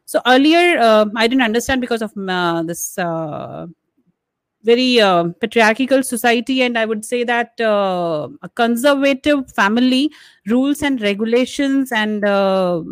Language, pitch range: English, 190-235 Hz